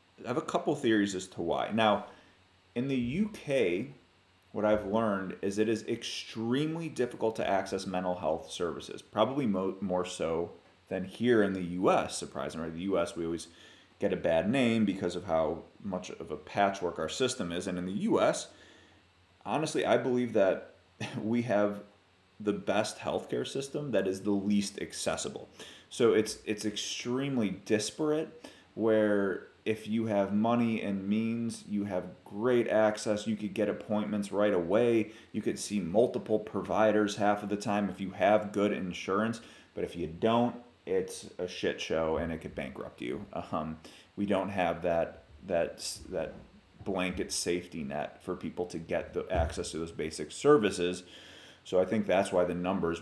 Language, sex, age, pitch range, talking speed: English, male, 30-49, 90-110 Hz, 165 wpm